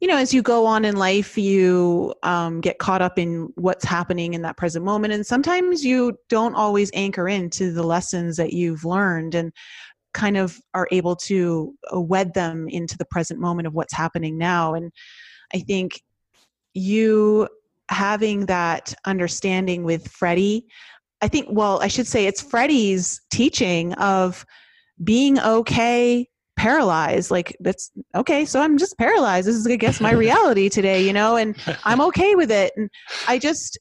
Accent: American